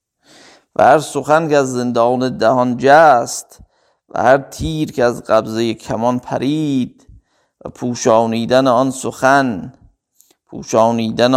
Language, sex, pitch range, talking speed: Persian, male, 120-145 Hz, 110 wpm